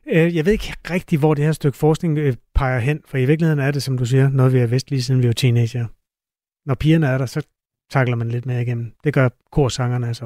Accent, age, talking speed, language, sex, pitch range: native, 30-49, 245 wpm, Danish, male, 130-165 Hz